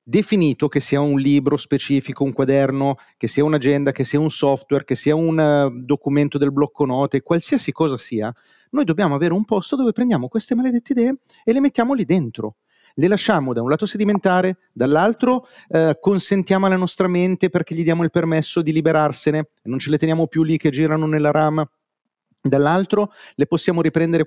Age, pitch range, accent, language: 40-59, 135-195 Hz, native, Italian